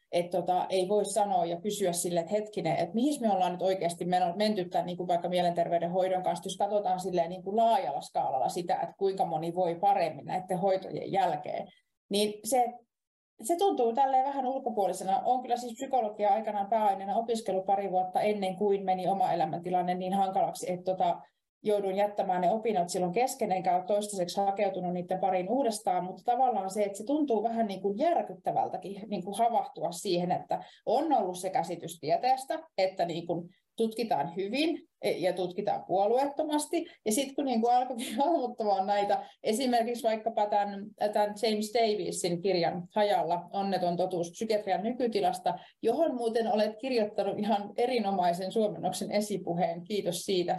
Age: 30-49